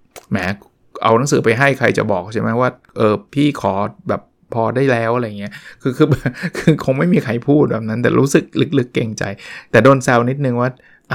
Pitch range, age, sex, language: 115-150 Hz, 20-39, male, Thai